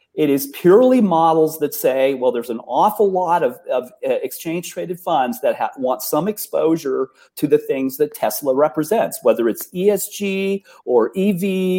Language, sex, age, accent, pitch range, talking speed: English, male, 40-59, American, 150-230 Hz, 160 wpm